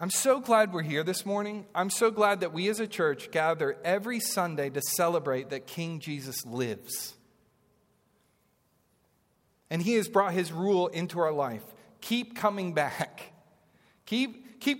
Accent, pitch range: American, 160-225 Hz